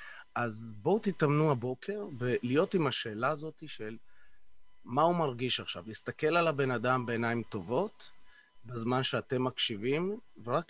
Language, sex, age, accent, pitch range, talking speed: Hebrew, male, 30-49, native, 115-140 Hz, 130 wpm